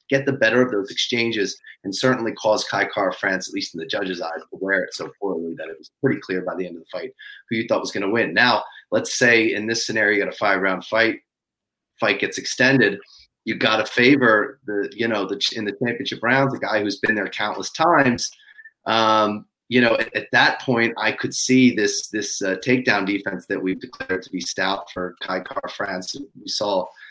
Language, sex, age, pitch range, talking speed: English, male, 30-49, 95-145 Hz, 225 wpm